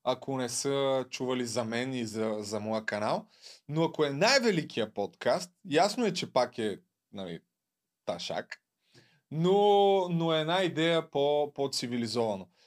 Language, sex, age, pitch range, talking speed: Bulgarian, male, 30-49, 125-165 Hz, 140 wpm